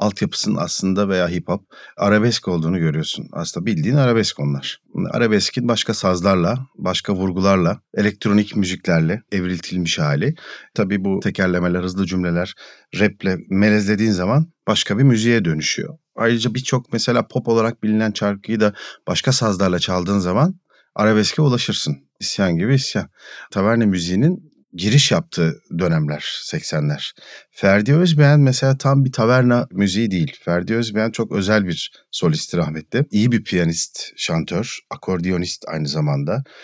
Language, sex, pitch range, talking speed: Turkish, male, 95-125 Hz, 130 wpm